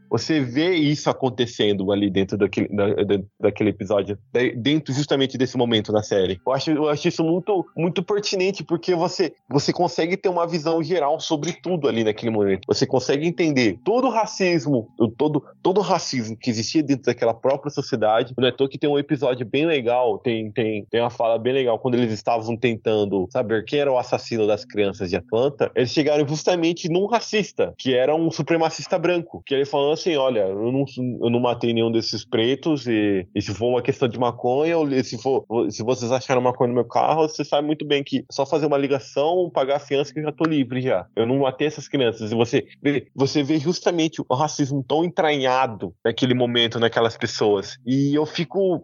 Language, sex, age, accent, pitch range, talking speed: Portuguese, male, 20-39, Brazilian, 120-170 Hz, 200 wpm